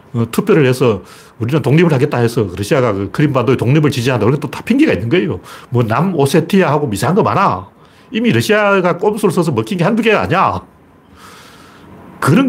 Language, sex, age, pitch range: Korean, male, 40-59, 115-180 Hz